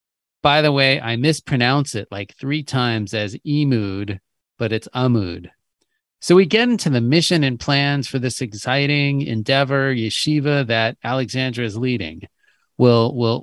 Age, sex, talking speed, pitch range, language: 40-59, male, 145 wpm, 110-140 Hz, English